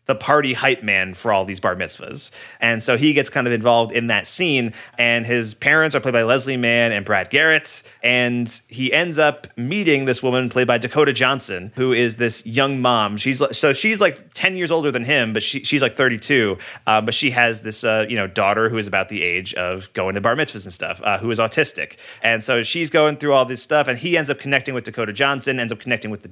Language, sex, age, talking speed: English, male, 30-49, 245 wpm